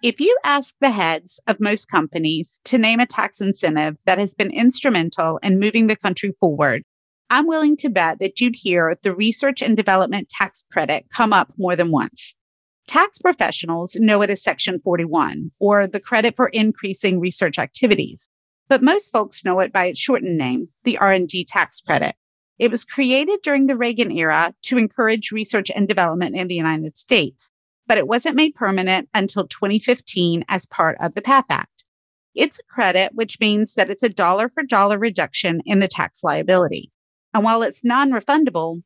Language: English